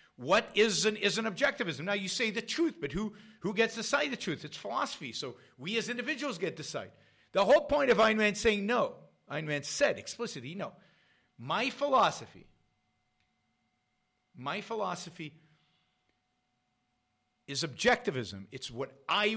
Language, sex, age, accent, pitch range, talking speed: English, male, 50-69, American, 135-230 Hz, 155 wpm